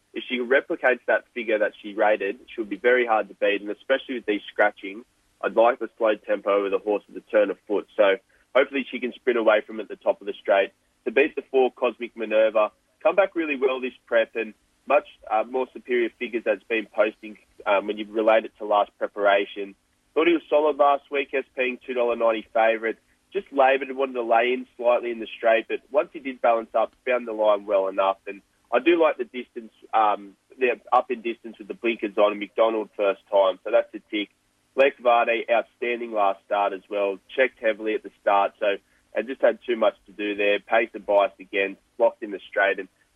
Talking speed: 220 wpm